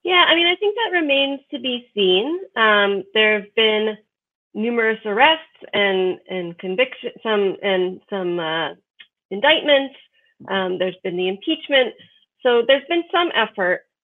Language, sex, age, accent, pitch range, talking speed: English, female, 30-49, American, 195-275 Hz, 145 wpm